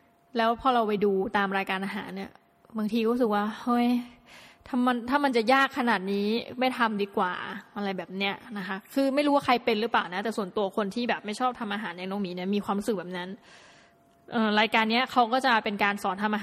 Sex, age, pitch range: female, 20-39, 205-245 Hz